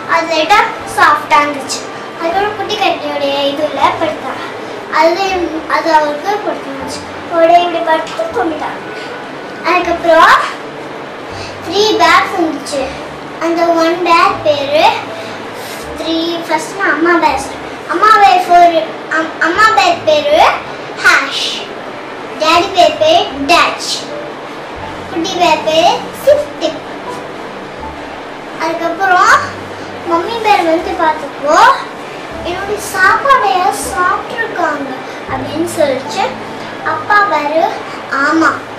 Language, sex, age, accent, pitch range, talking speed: Tamil, male, 20-39, native, 305-380 Hz, 80 wpm